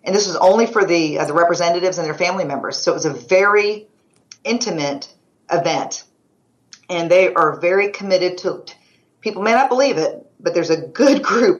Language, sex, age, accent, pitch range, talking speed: English, female, 40-59, American, 160-195 Hz, 185 wpm